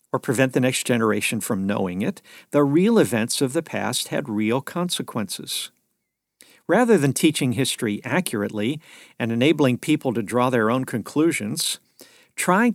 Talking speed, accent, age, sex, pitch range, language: 145 wpm, American, 50-69, male, 110-155 Hz, English